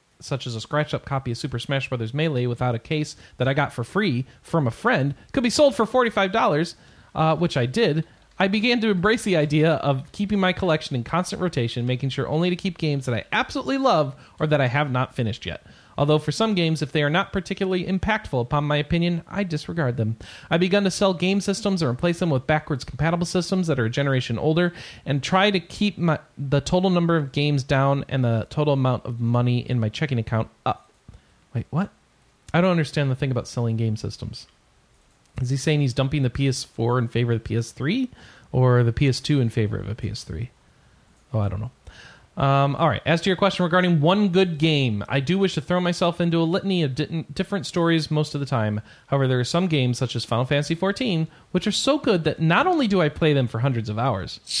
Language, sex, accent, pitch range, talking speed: English, male, American, 125-175 Hz, 225 wpm